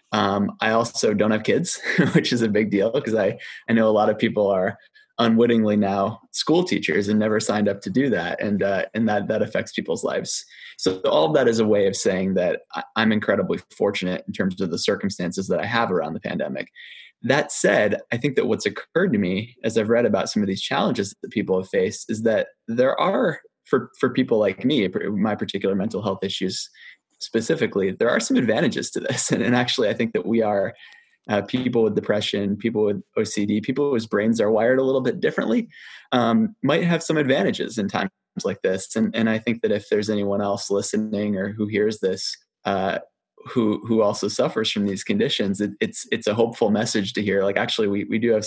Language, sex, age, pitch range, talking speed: English, male, 20-39, 100-120 Hz, 215 wpm